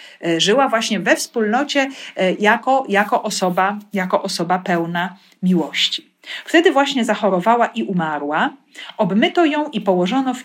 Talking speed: 110 wpm